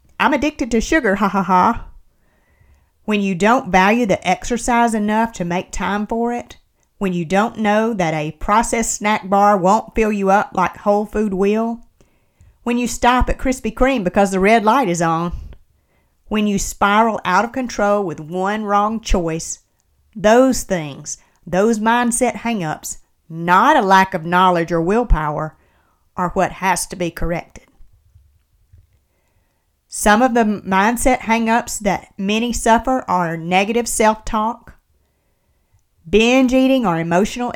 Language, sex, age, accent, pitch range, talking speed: English, female, 40-59, American, 180-225 Hz, 145 wpm